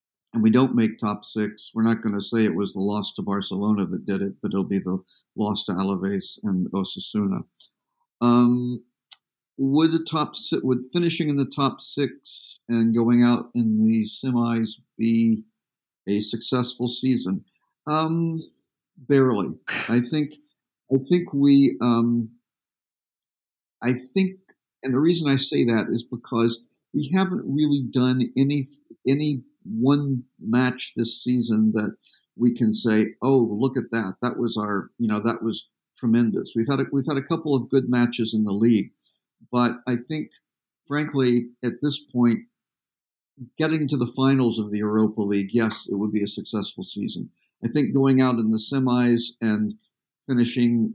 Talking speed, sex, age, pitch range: 165 wpm, male, 50-69, 110-135 Hz